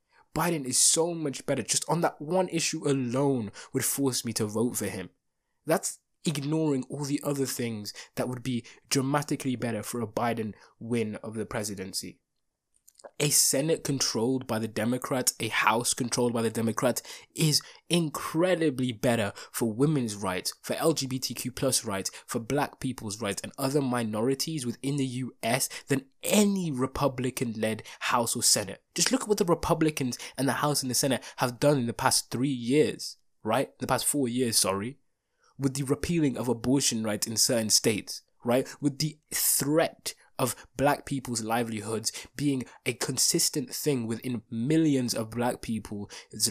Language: English